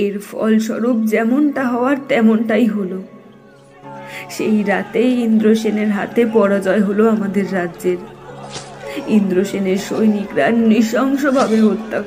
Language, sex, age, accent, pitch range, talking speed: Bengali, female, 20-39, native, 205-240 Hz, 90 wpm